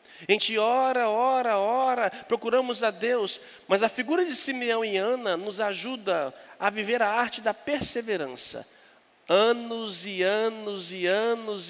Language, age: Portuguese, 50-69